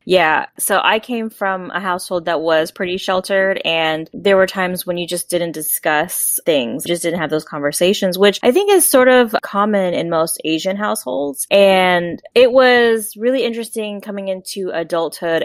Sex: female